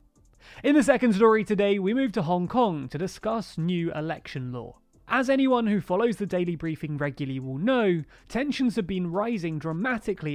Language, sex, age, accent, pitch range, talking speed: English, male, 30-49, British, 150-230 Hz, 175 wpm